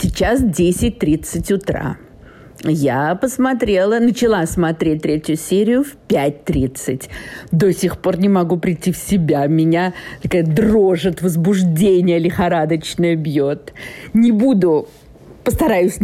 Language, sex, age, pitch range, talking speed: Russian, female, 50-69, 150-185 Hz, 100 wpm